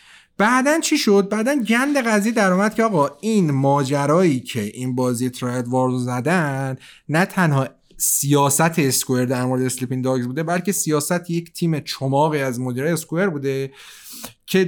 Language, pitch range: Persian, 130-200 Hz